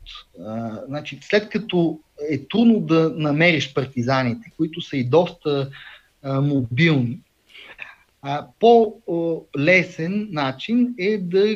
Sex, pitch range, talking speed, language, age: male, 135-190 Hz, 105 wpm, Bulgarian, 30-49